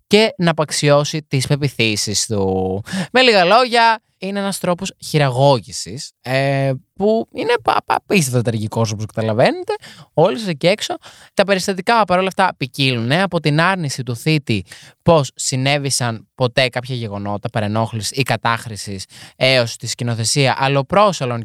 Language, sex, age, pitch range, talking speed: Greek, male, 20-39, 125-185 Hz, 130 wpm